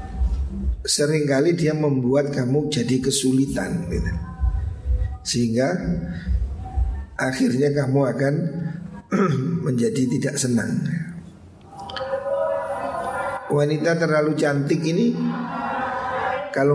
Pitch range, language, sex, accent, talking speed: 125-170 Hz, Indonesian, male, native, 65 wpm